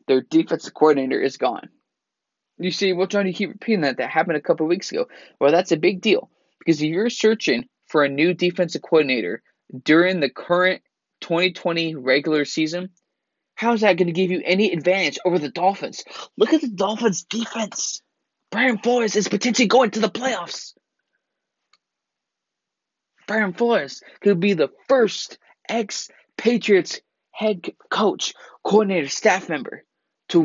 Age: 20-39